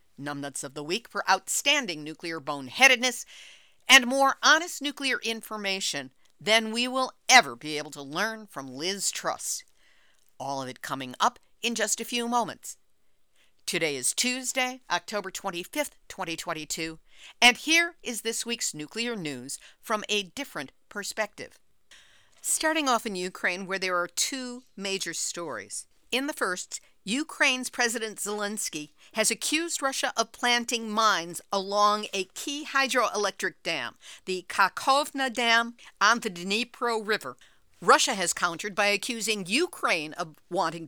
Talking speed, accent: 135 wpm, American